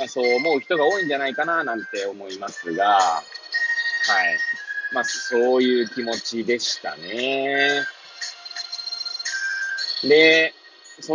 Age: 20-39